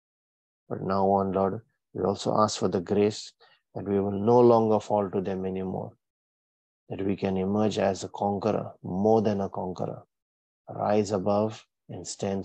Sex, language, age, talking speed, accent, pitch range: male, English, 30-49, 165 wpm, Indian, 95-110 Hz